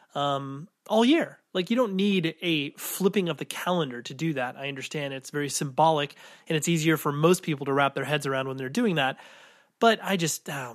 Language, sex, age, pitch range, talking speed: English, male, 30-49, 145-195 Hz, 220 wpm